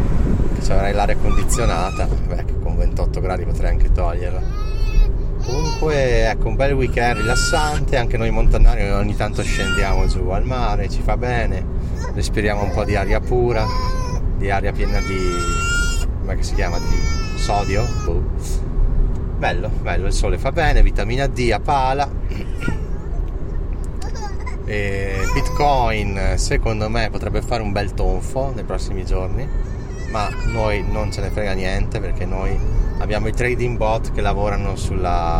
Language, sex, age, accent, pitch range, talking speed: Italian, male, 30-49, native, 90-110 Hz, 135 wpm